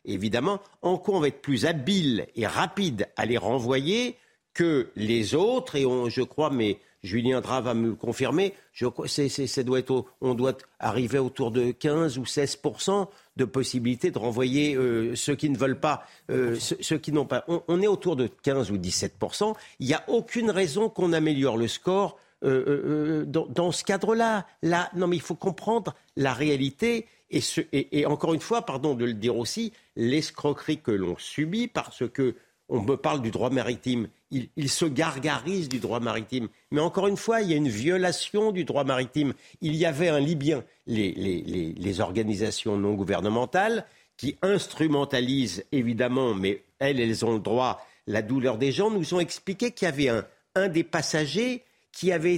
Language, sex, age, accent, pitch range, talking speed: French, male, 50-69, French, 125-180 Hz, 190 wpm